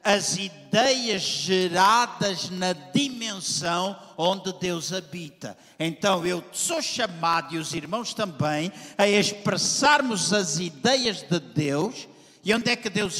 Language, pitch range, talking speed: Portuguese, 165-215 Hz, 125 wpm